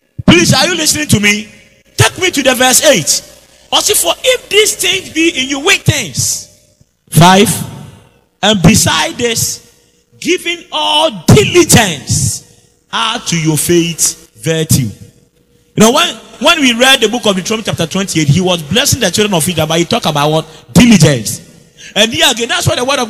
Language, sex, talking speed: English, male, 175 wpm